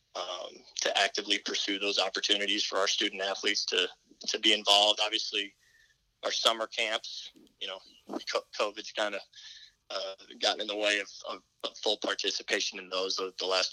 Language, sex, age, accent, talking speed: English, male, 20-39, American, 155 wpm